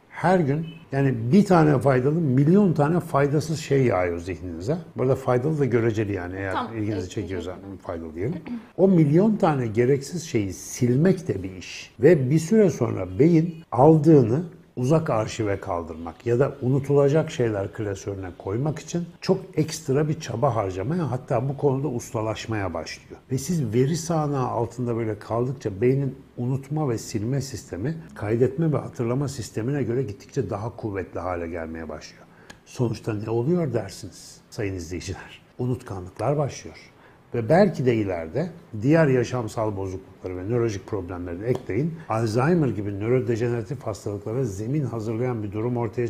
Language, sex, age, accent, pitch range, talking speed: Turkish, male, 60-79, native, 110-150 Hz, 140 wpm